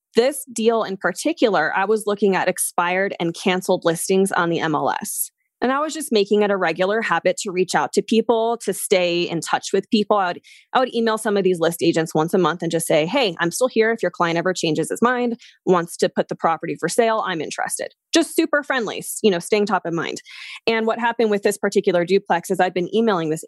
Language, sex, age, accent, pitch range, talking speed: English, female, 20-39, American, 170-220 Hz, 235 wpm